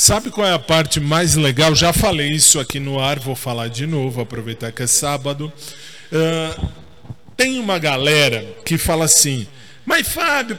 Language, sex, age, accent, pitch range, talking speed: Portuguese, male, 20-39, Brazilian, 125-170 Hz, 170 wpm